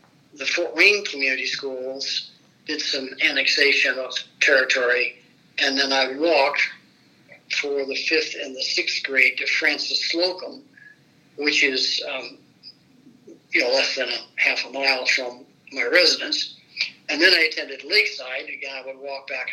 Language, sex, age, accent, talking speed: English, male, 60-79, American, 150 wpm